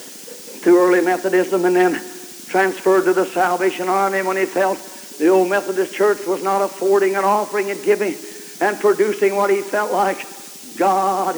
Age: 60-79